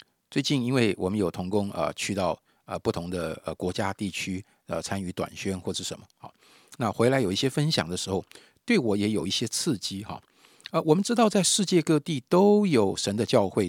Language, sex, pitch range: Chinese, male, 100-135 Hz